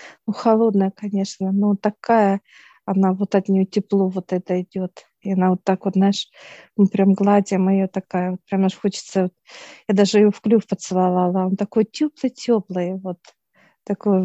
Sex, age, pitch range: female, 50-69, 185-210 Hz